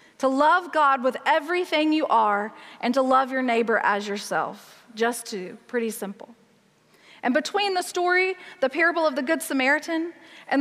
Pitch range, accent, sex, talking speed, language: 230-290 Hz, American, female, 165 wpm, English